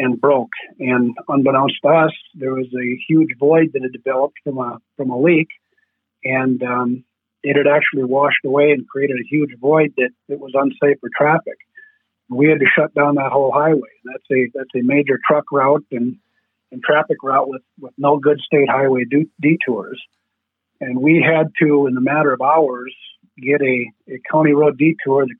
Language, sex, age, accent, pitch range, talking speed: English, male, 50-69, American, 130-155 Hz, 190 wpm